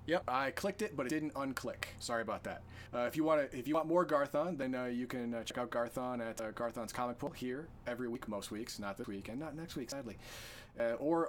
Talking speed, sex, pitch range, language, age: 260 wpm, male, 120-155 Hz, English, 30-49